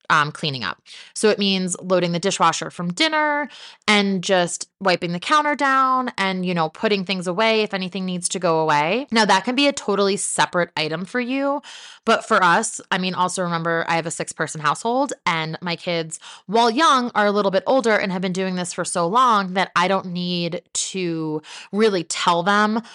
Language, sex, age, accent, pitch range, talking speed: English, female, 20-39, American, 180-240 Hz, 200 wpm